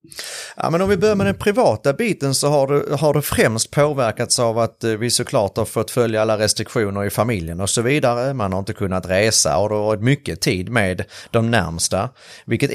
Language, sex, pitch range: Swedish, male, 110-130 Hz